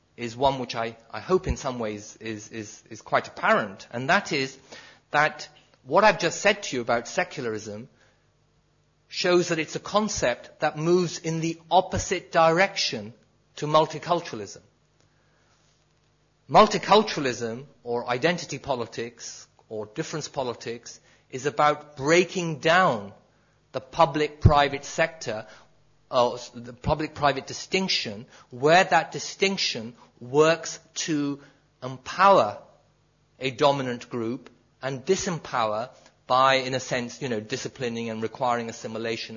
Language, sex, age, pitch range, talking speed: English, male, 40-59, 120-160 Hz, 115 wpm